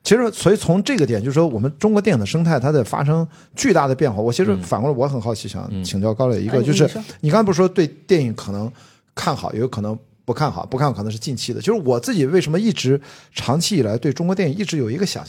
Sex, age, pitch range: male, 50-69, 115-170 Hz